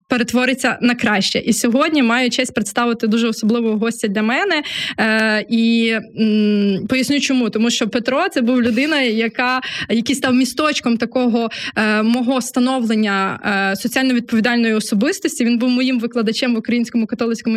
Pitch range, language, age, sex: 230-265 Hz, Ukrainian, 20-39, female